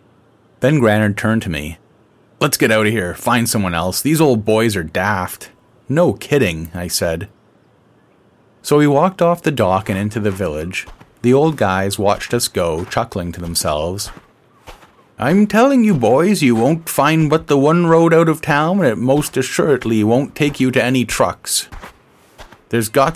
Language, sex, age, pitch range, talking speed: English, male, 30-49, 90-140 Hz, 175 wpm